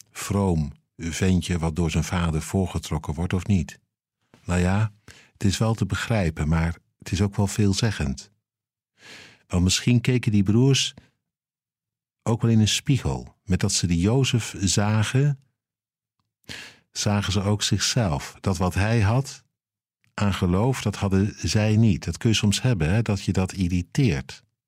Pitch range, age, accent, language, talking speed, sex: 90-115 Hz, 50-69, Dutch, Dutch, 150 wpm, male